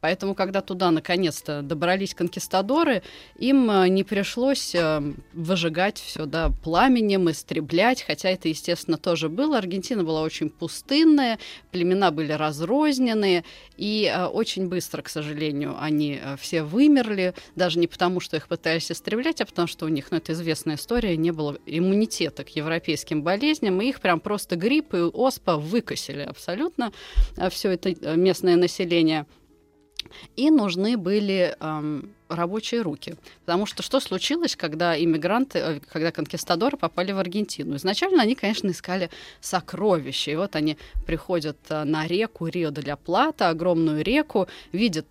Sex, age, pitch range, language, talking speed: female, 20-39, 160-205 Hz, Russian, 140 wpm